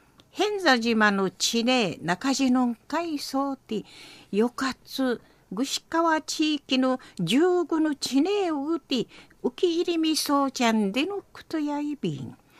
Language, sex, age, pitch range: Japanese, female, 50-69, 235-320 Hz